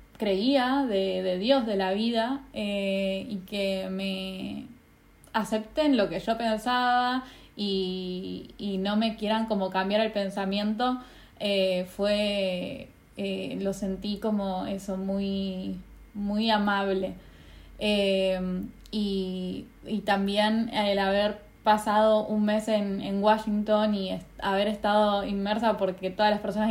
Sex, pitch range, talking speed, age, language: female, 195-220 Hz, 125 wpm, 10-29, Spanish